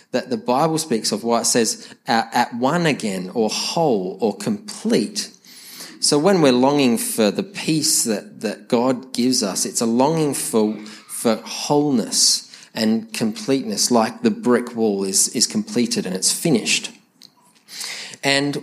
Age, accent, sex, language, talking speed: 20-39, Australian, male, English, 150 wpm